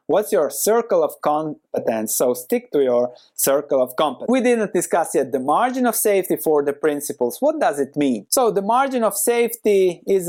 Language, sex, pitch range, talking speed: English, male, 140-230 Hz, 190 wpm